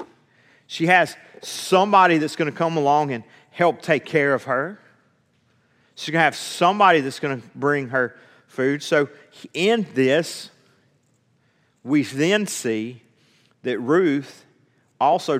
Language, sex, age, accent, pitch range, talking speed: English, male, 40-59, American, 145-215 Hz, 135 wpm